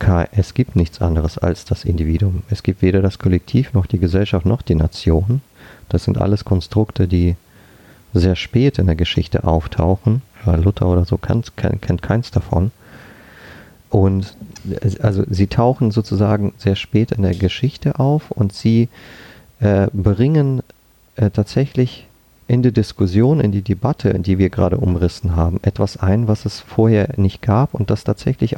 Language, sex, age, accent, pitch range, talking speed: German, male, 40-59, German, 90-115 Hz, 150 wpm